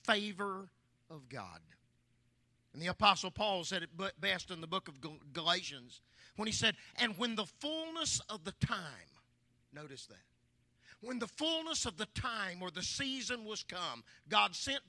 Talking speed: 160 wpm